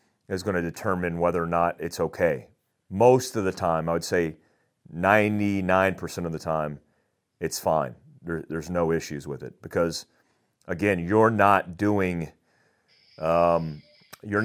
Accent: American